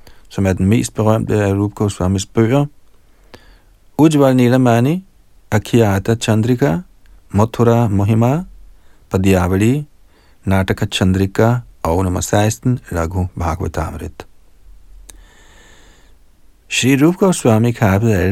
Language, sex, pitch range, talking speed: Danish, male, 90-115 Hz, 90 wpm